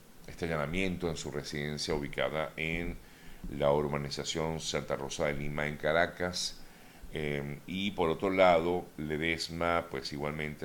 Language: Spanish